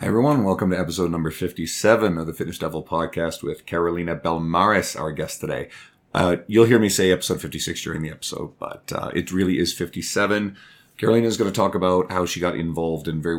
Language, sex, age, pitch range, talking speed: English, male, 30-49, 85-95 Hz, 205 wpm